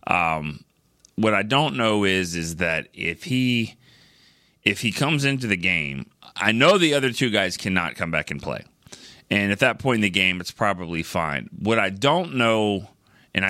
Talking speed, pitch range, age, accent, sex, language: 185 wpm, 90-120 Hz, 30-49, American, male, English